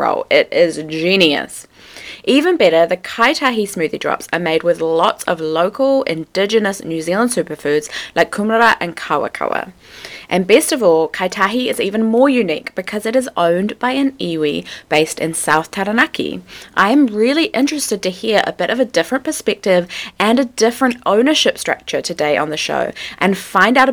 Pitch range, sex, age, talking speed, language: 170-230 Hz, female, 20-39, 170 wpm, English